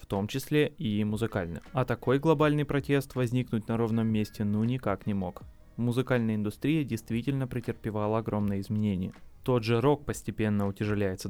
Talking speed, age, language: 150 wpm, 20-39, Russian